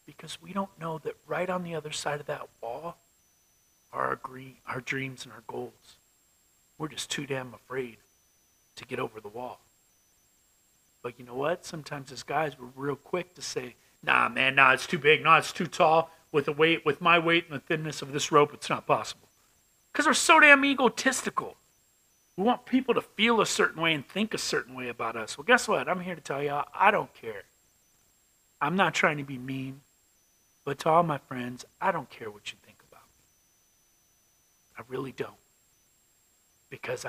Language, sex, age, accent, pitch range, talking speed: English, male, 40-59, American, 125-160 Hz, 195 wpm